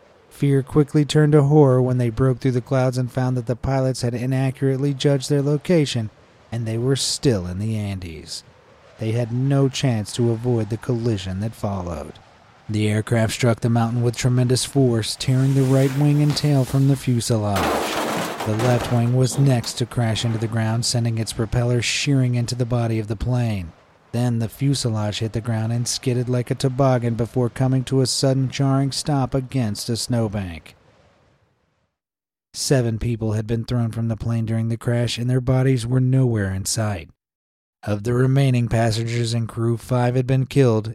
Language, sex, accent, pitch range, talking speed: English, male, American, 115-130 Hz, 180 wpm